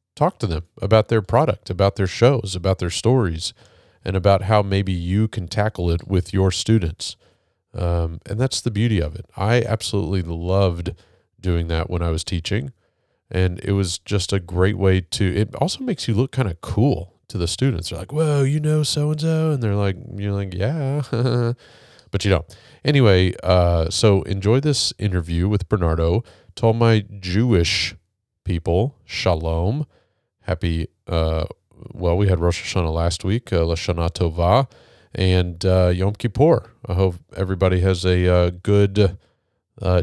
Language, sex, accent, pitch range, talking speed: English, male, American, 90-110 Hz, 165 wpm